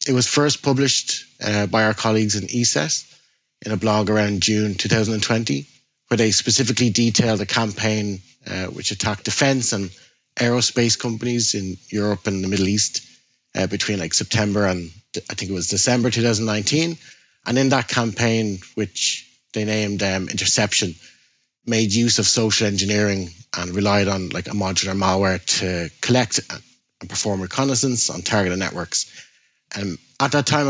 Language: English